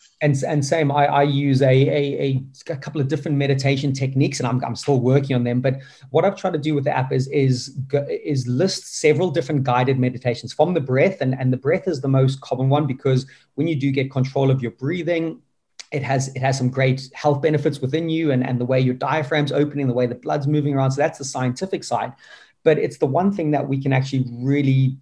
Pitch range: 130-150 Hz